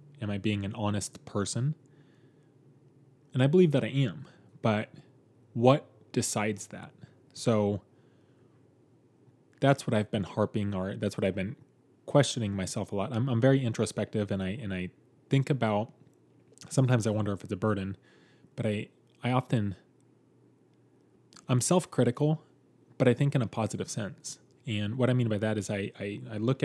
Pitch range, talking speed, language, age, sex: 105-135 Hz, 160 wpm, English, 20-39, male